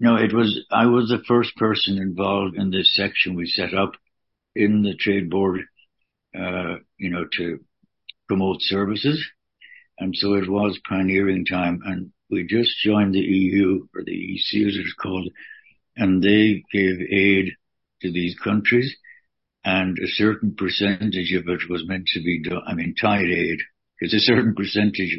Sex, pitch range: male, 90-105 Hz